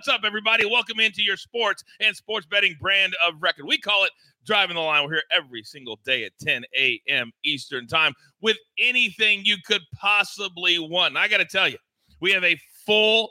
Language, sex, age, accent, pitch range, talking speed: English, male, 40-59, American, 160-210 Hz, 200 wpm